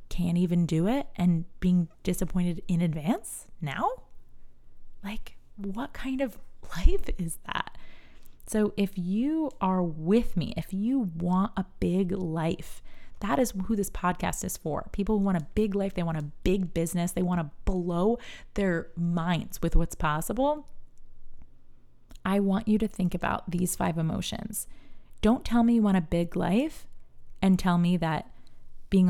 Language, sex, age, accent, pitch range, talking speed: English, female, 20-39, American, 160-200 Hz, 160 wpm